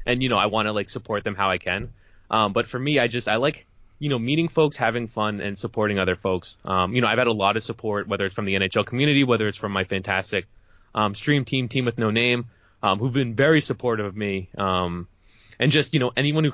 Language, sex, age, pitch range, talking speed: English, male, 20-39, 100-135 Hz, 260 wpm